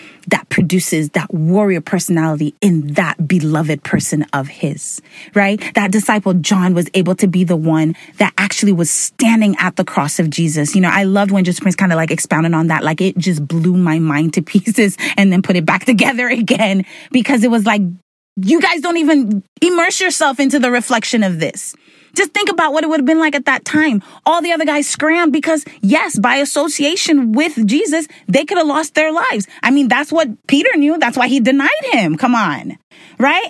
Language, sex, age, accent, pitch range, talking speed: English, female, 30-49, American, 190-310 Hz, 210 wpm